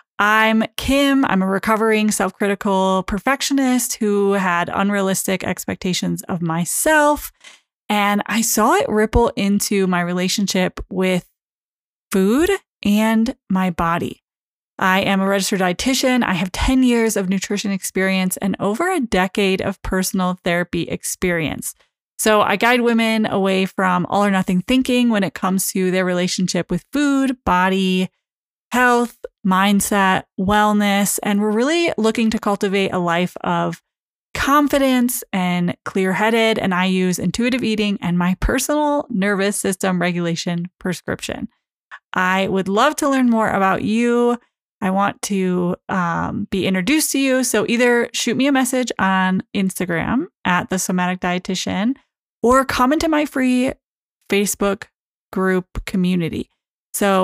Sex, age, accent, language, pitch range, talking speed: female, 20-39, American, English, 185-235 Hz, 135 wpm